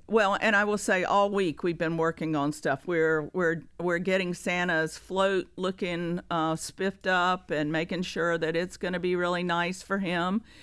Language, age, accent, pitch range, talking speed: English, 50-69, American, 160-185 Hz, 190 wpm